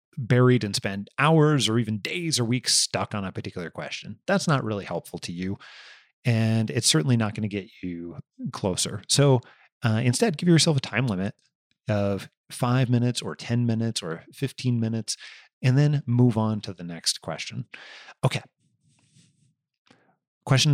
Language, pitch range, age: English, 105-140 Hz, 30-49